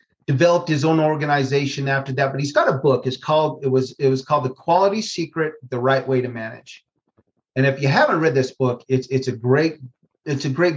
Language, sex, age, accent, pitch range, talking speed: English, male, 40-59, American, 130-160 Hz, 225 wpm